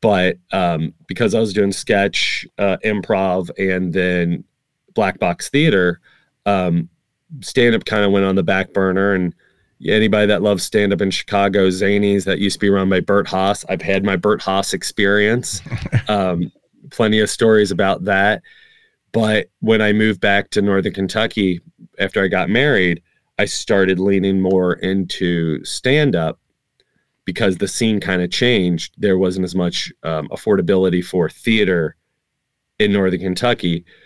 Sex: male